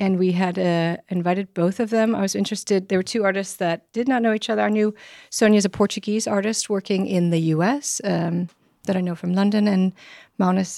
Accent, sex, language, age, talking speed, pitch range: American, female, Danish, 30-49, 215 wpm, 175-210 Hz